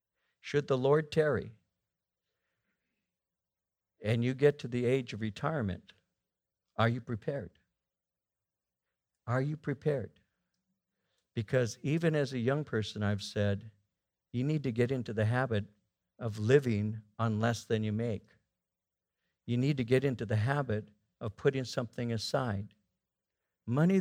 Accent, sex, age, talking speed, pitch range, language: American, male, 60-79, 130 wpm, 105-145 Hz, English